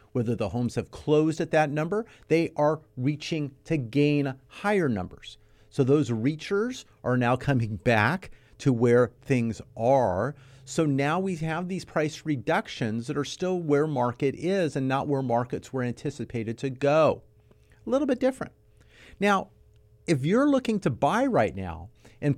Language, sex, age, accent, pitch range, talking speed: English, male, 40-59, American, 115-170 Hz, 160 wpm